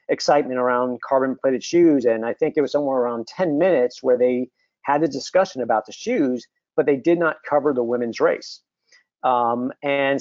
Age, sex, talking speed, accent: 50-69, male, 180 wpm, American